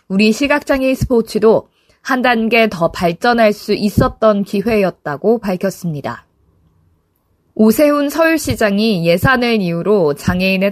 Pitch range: 190-240 Hz